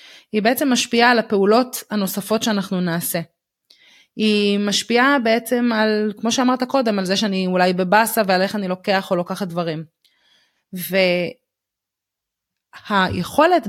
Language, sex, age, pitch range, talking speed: Hebrew, female, 20-39, 180-225 Hz, 125 wpm